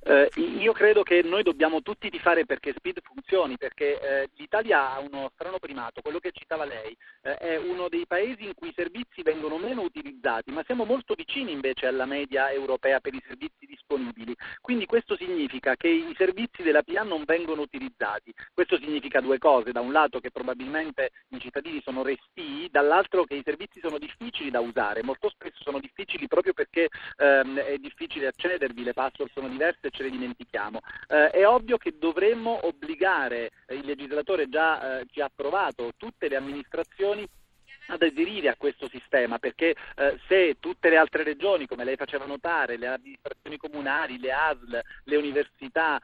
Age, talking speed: 40-59, 175 wpm